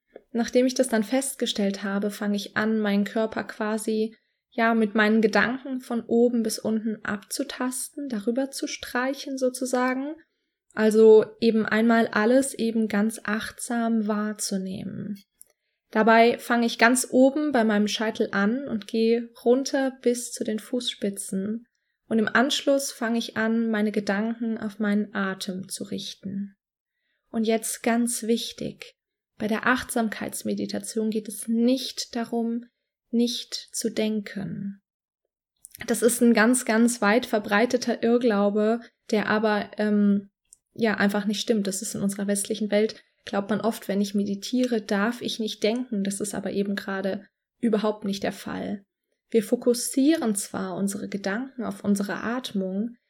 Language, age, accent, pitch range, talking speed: German, 20-39, German, 210-240 Hz, 140 wpm